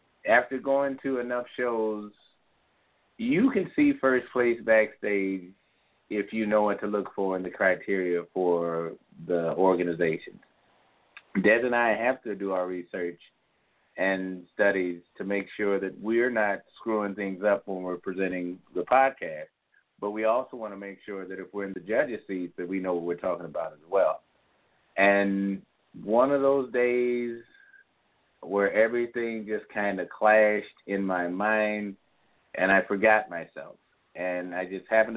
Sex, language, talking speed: male, English, 160 wpm